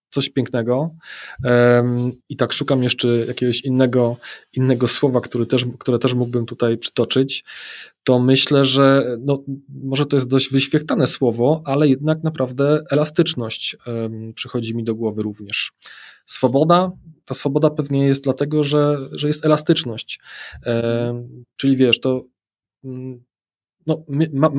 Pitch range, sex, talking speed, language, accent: 120-140 Hz, male, 115 wpm, Polish, native